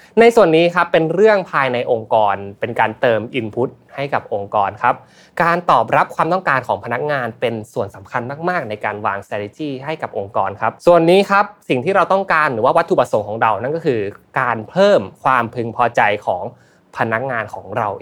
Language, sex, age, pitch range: Thai, male, 20-39, 115-165 Hz